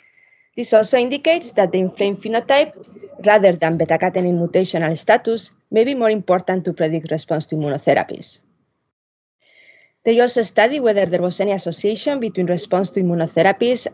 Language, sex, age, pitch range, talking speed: English, female, 20-39, 170-210 Hz, 140 wpm